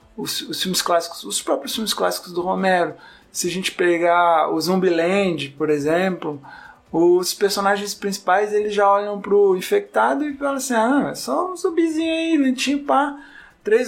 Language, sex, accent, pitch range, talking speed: Portuguese, male, Brazilian, 175-235 Hz, 165 wpm